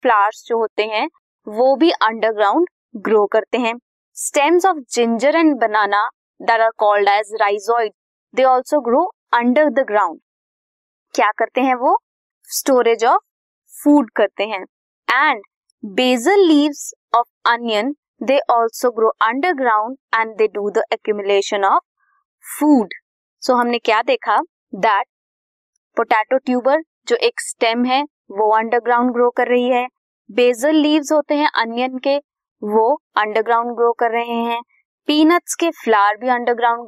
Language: Hindi